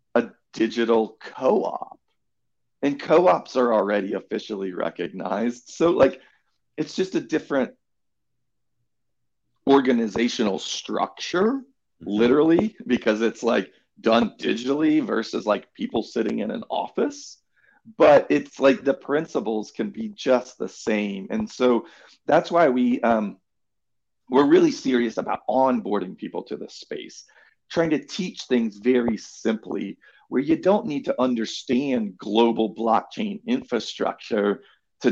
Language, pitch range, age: English, 105-140 Hz, 40-59